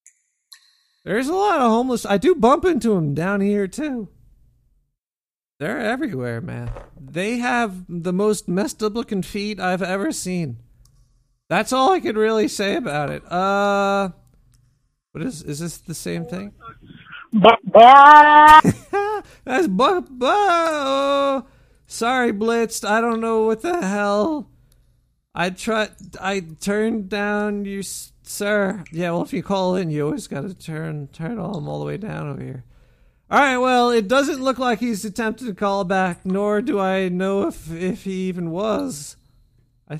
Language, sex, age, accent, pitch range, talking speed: English, male, 40-59, American, 170-235 Hz, 150 wpm